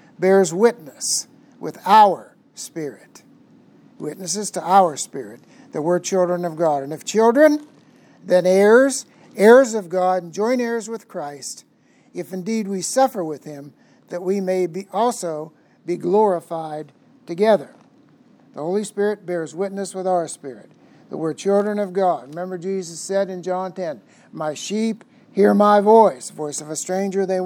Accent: American